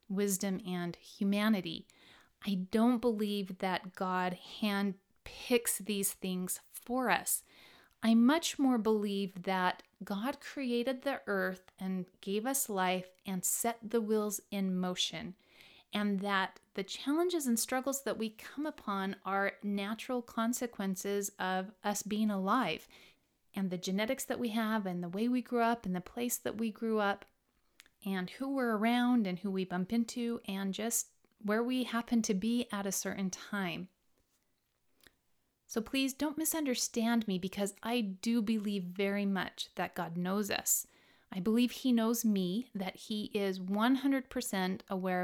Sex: female